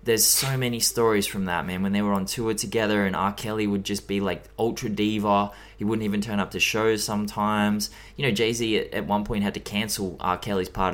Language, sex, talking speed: English, male, 230 wpm